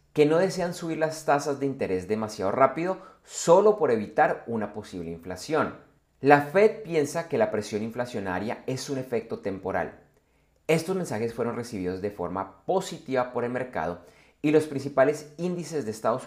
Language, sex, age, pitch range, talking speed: Spanish, male, 30-49, 105-155 Hz, 160 wpm